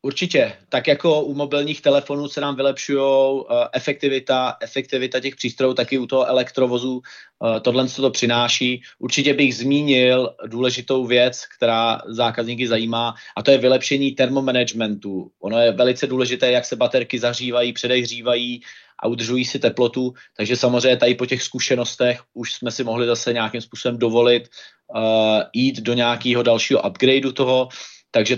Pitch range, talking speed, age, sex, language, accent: 115-130 Hz, 150 wpm, 30-49, male, Czech, native